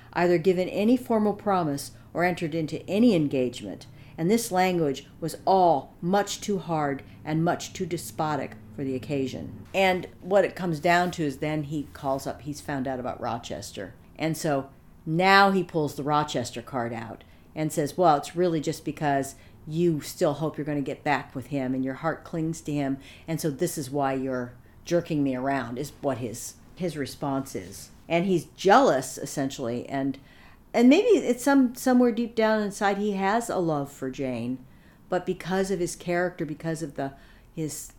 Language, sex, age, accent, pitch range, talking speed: English, female, 50-69, American, 135-175 Hz, 185 wpm